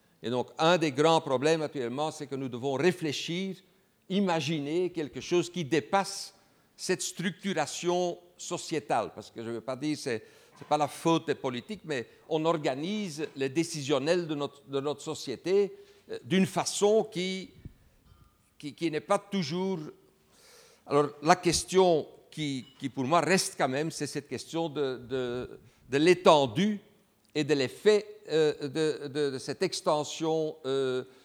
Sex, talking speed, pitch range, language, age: male, 150 wpm, 135-175 Hz, French, 60-79